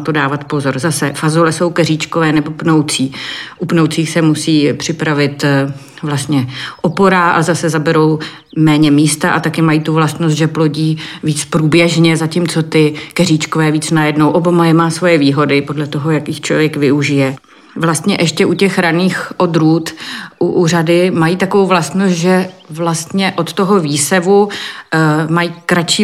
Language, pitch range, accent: Czech, 150-170 Hz, native